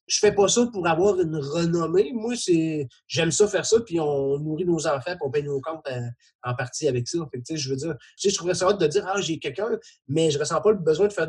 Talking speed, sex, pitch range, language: 300 wpm, male, 145-185 Hz, French